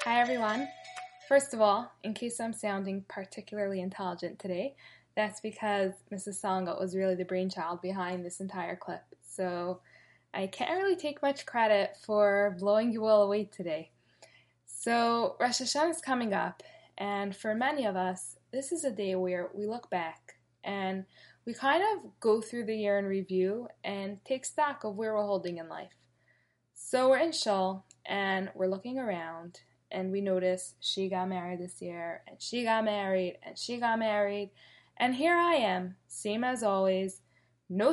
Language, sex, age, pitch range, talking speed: English, female, 10-29, 185-240 Hz, 170 wpm